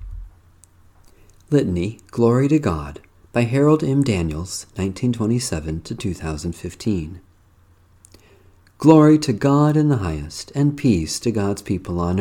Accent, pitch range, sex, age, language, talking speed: American, 90-130 Hz, male, 50-69, English, 105 wpm